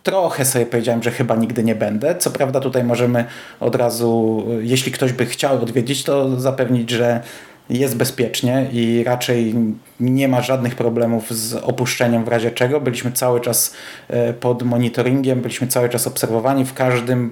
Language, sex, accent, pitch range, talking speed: Polish, male, native, 120-135 Hz, 160 wpm